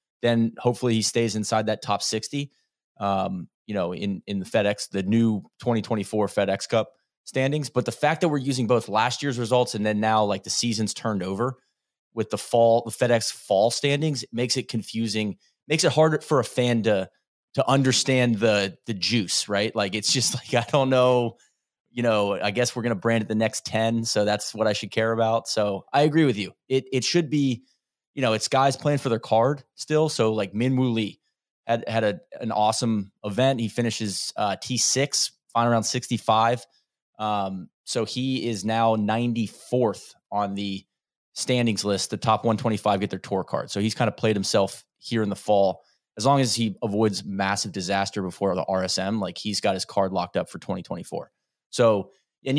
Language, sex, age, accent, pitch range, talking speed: English, male, 20-39, American, 105-125 Hz, 195 wpm